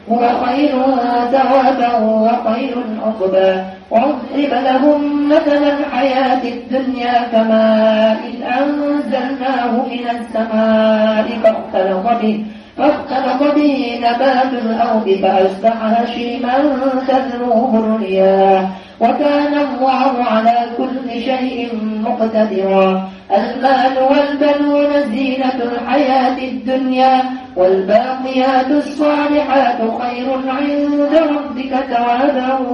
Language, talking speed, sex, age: Indonesian, 55 wpm, female, 30-49